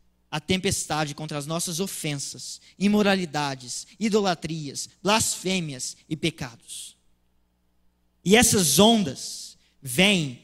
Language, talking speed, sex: Portuguese, 85 wpm, male